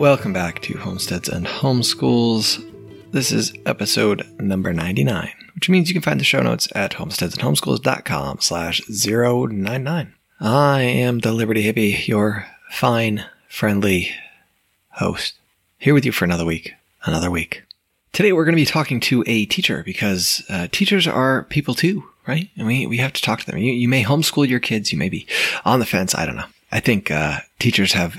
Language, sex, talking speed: English, male, 180 wpm